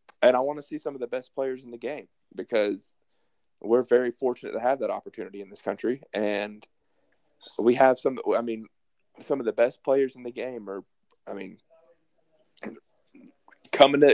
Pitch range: 115-155 Hz